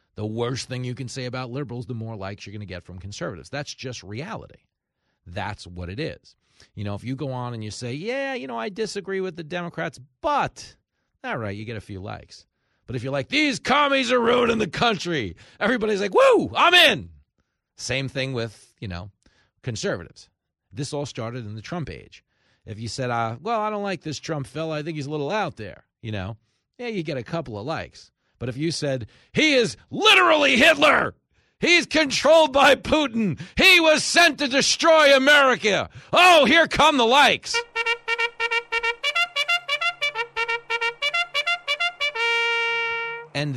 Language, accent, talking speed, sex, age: English, American, 175 wpm, male, 40-59